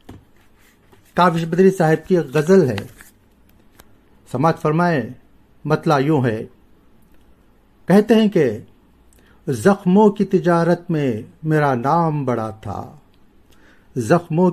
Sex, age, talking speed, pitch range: male, 60-79, 100 wpm, 115-160 Hz